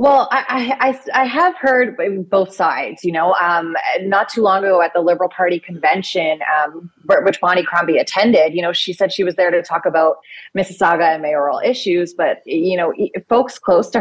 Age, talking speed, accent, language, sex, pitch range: 30-49, 190 wpm, American, English, female, 165-190 Hz